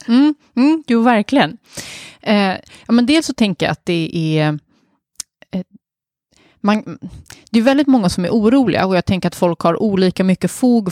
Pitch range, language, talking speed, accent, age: 175-240 Hz, Swedish, 175 wpm, native, 20-39